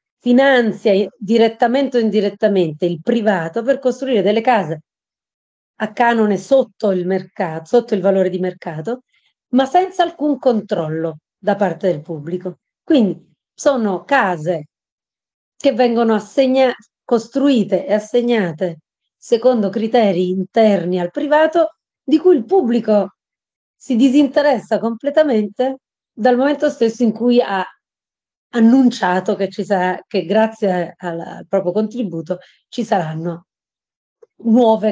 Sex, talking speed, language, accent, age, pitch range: female, 115 wpm, Italian, native, 30-49, 185-245 Hz